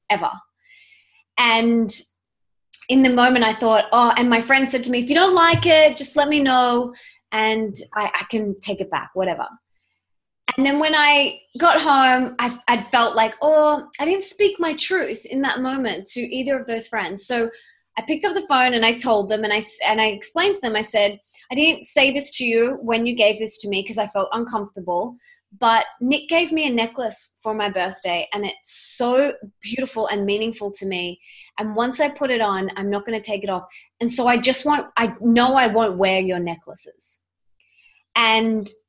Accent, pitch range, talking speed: Australian, 205-265 Hz, 205 wpm